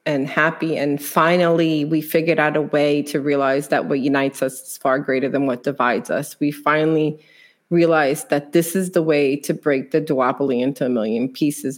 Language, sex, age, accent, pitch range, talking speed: English, female, 30-49, American, 140-165 Hz, 195 wpm